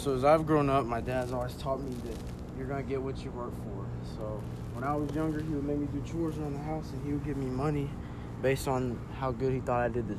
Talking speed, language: 285 wpm, English